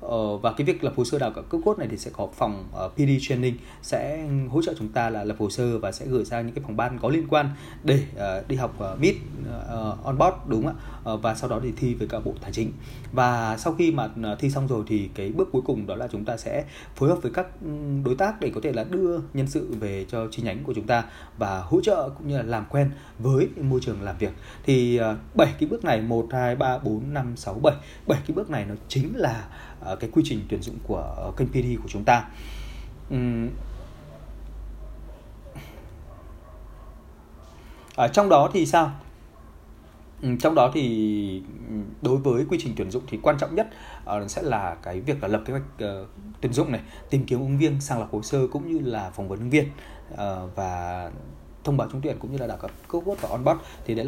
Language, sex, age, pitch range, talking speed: Vietnamese, male, 20-39, 105-140 Hz, 215 wpm